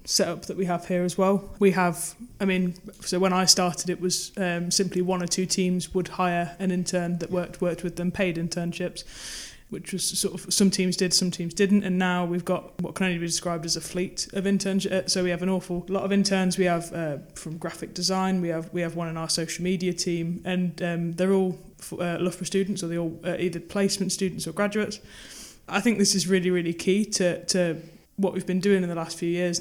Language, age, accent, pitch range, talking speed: English, 20-39, British, 175-190 Hz, 235 wpm